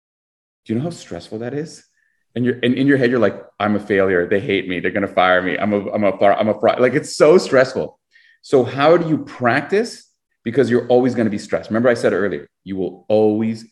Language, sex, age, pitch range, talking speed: English, male, 30-49, 100-130 Hz, 245 wpm